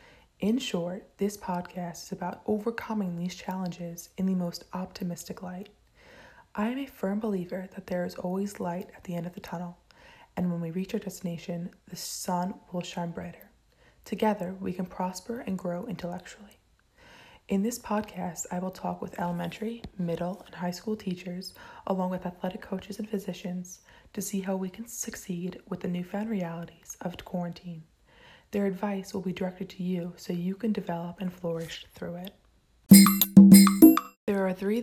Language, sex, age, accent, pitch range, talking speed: English, female, 20-39, American, 175-200 Hz, 165 wpm